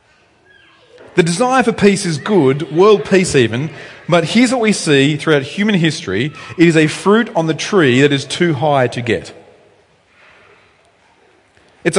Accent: Australian